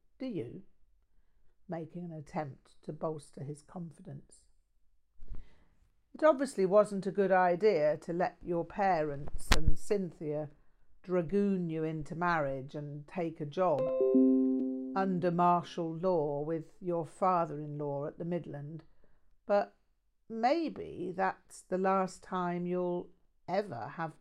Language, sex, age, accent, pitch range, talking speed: English, female, 50-69, British, 140-185 Hz, 115 wpm